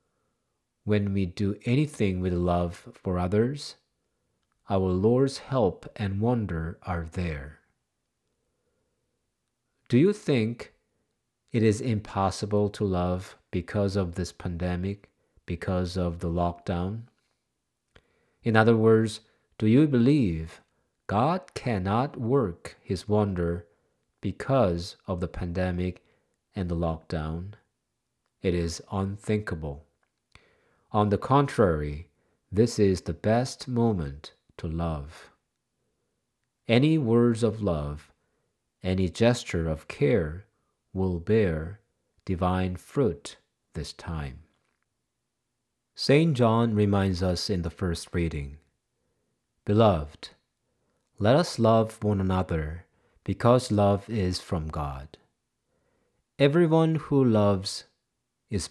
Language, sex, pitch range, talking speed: English, male, 85-115 Hz, 100 wpm